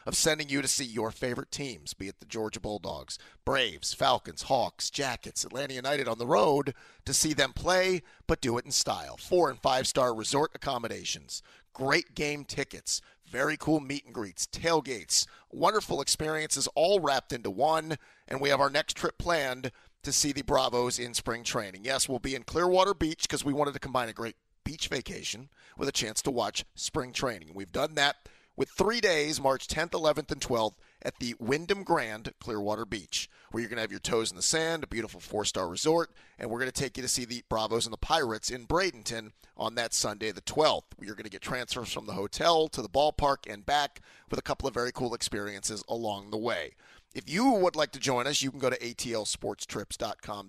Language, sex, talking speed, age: English, male, 205 wpm, 40-59